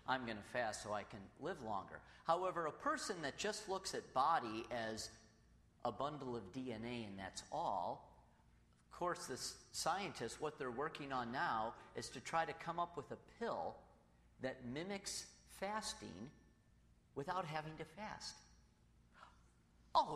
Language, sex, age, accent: English, male, 40-59, American